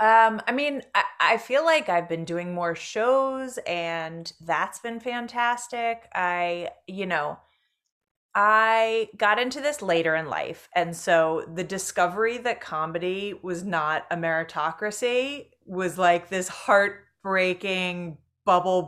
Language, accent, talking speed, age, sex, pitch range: English, American, 130 wpm, 30-49, female, 175-225 Hz